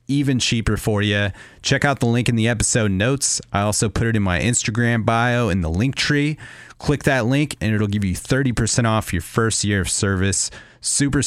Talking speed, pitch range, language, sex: 210 wpm, 95-120 Hz, English, male